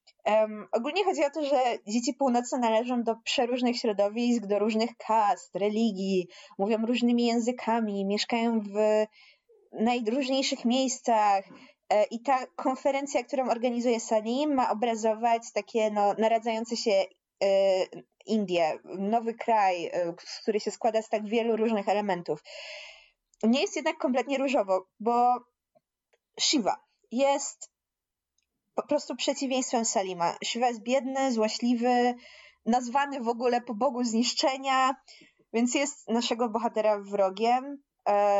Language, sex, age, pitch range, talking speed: Polish, female, 20-39, 215-265 Hz, 115 wpm